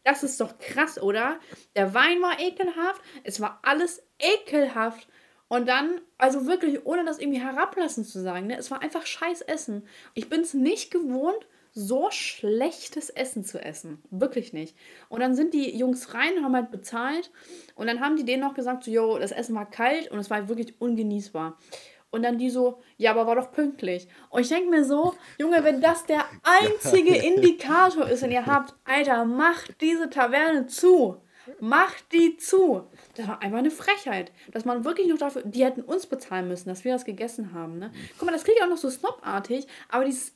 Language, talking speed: German, 200 wpm